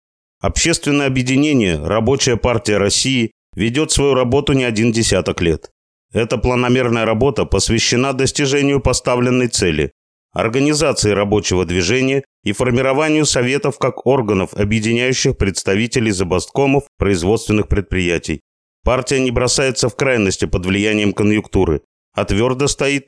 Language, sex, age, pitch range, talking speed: Russian, male, 30-49, 95-130 Hz, 110 wpm